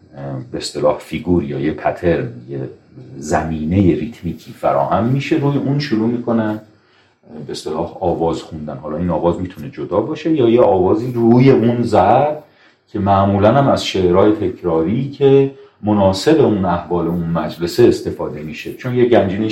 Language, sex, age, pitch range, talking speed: Persian, male, 40-59, 80-110 Hz, 150 wpm